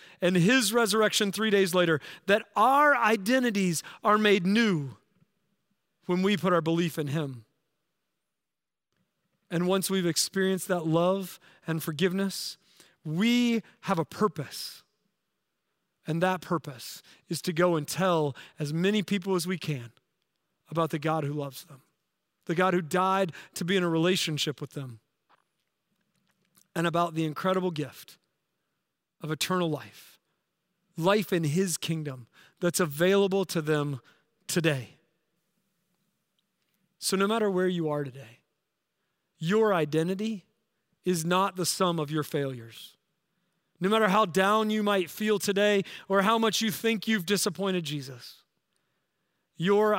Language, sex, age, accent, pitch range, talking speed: English, male, 40-59, American, 160-195 Hz, 135 wpm